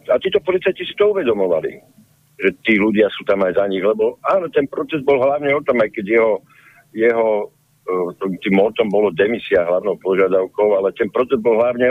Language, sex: Slovak, male